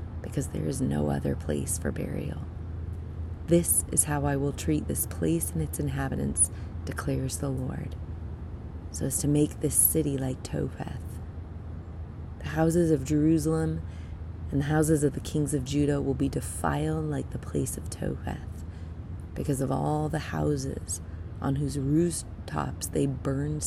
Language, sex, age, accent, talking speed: English, female, 30-49, American, 150 wpm